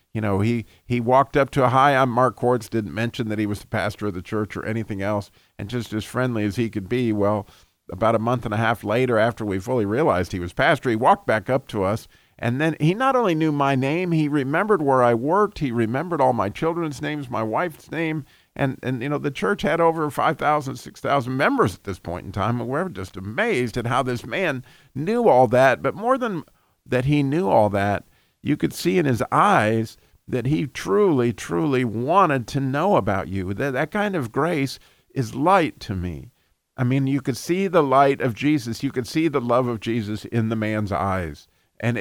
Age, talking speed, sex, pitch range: 50-69, 225 wpm, male, 105-140 Hz